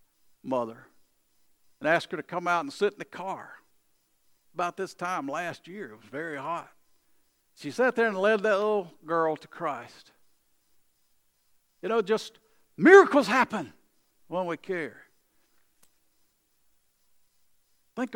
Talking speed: 130 wpm